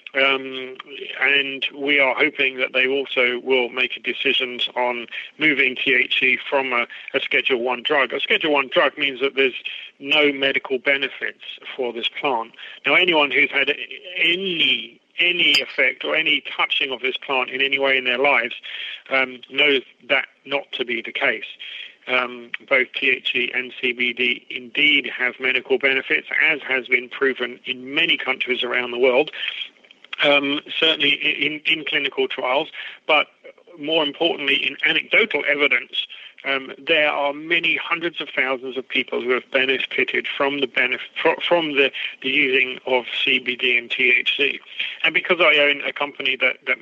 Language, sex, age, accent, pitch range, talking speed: English, male, 40-59, British, 130-150 Hz, 155 wpm